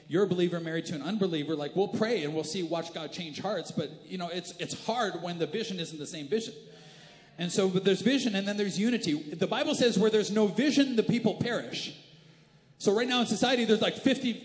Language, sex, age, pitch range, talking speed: English, male, 40-59, 160-230 Hz, 235 wpm